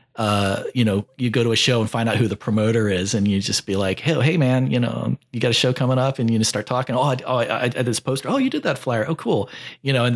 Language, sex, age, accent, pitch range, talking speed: English, male, 40-59, American, 105-130 Hz, 325 wpm